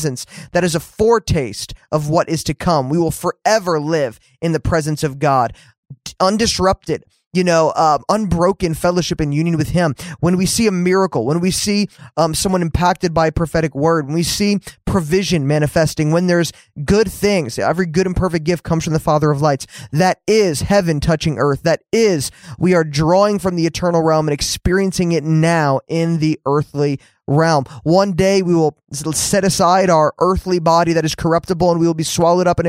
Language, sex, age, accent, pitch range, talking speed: English, male, 20-39, American, 150-180 Hz, 185 wpm